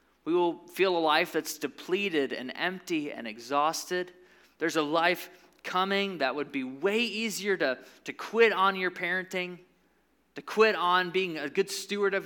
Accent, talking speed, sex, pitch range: American, 165 wpm, male, 155-200 Hz